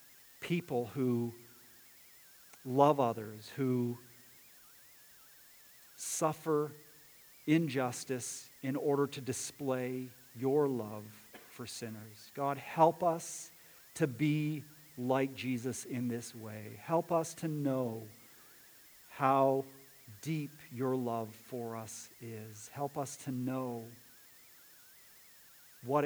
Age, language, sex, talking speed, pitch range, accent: 50-69, English, male, 95 wpm, 115-145 Hz, American